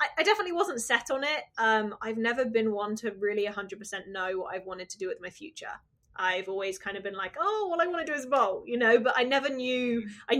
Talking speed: 255 wpm